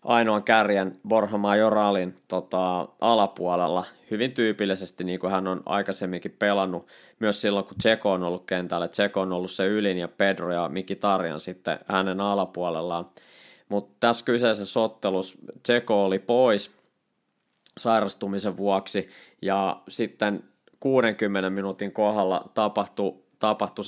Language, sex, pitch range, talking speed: Finnish, male, 95-110 Hz, 125 wpm